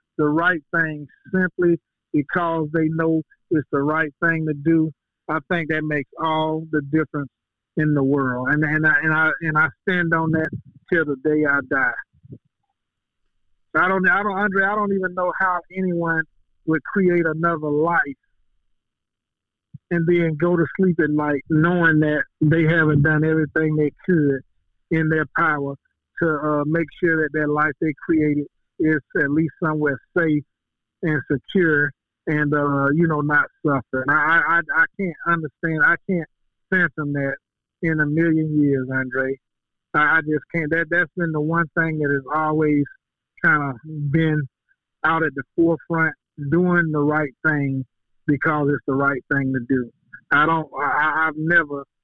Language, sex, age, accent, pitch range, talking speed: English, male, 50-69, American, 150-170 Hz, 165 wpm